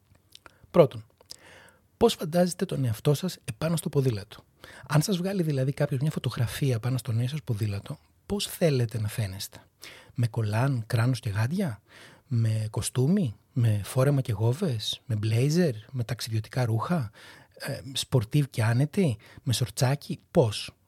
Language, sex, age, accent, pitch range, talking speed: Greek, male, 30-49, native, 110-155 Hz, 140 wpm